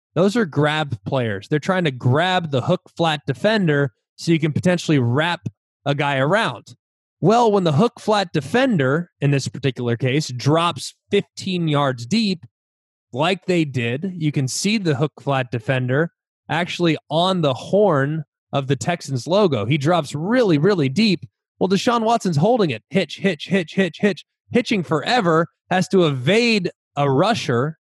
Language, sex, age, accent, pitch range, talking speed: English, male, 20-39, American, 135-185 Hz, 150 wpm